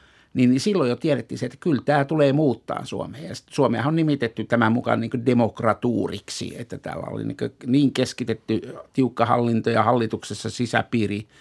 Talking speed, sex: 155 wpm, male